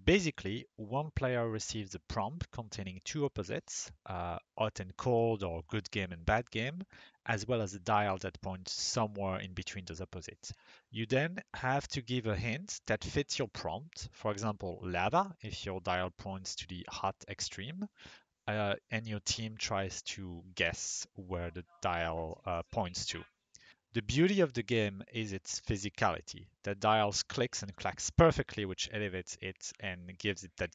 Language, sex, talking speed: English, male, 170 wpm